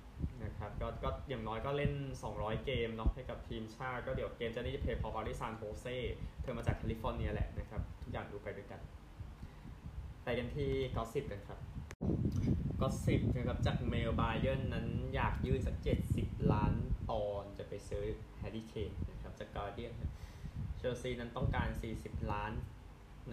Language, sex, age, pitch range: Thai, male, 20-39, 100-120 Hz